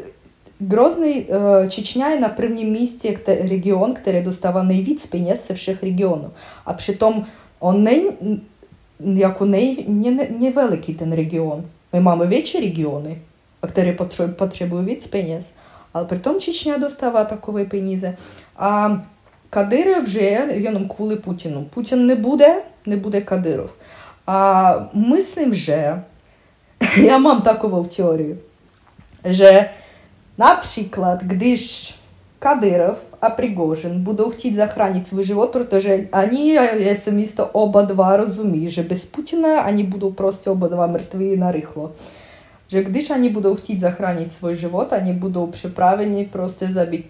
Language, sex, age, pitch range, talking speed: Czech, female, 20-39, 180-215 Hz, 115 wpm